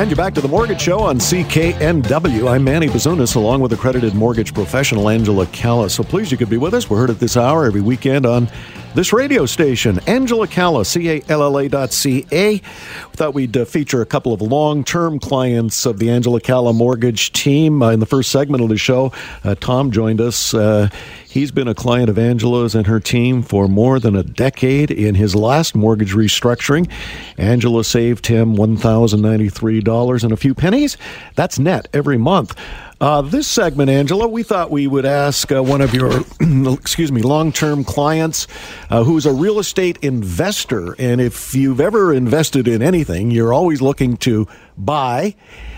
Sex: male